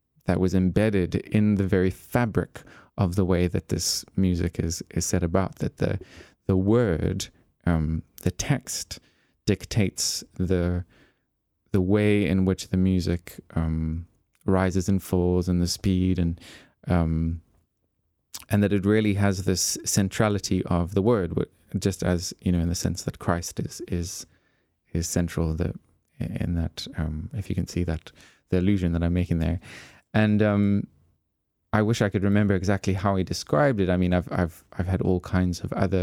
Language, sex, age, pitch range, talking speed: English, male, 20-39, 85-100 Hz, 170 wpm